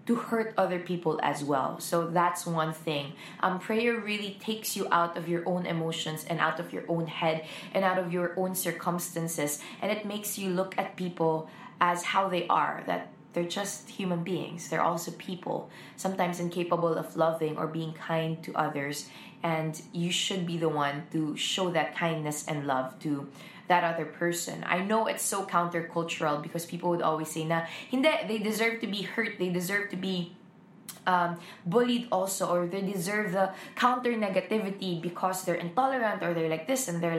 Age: 20-39